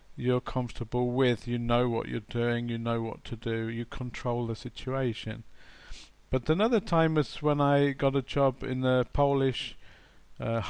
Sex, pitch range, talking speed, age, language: male, 115-140 Hz, 170 wpm, 50-69, English